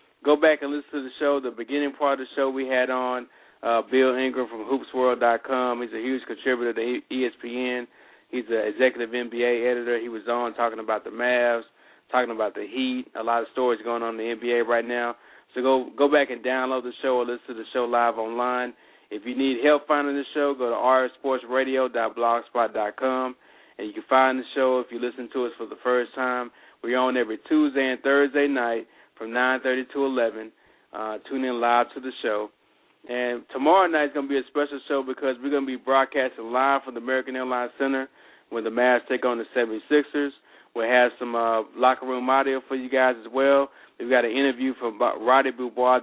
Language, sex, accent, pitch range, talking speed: English, male, American, 120-135 Hz, 210 wpm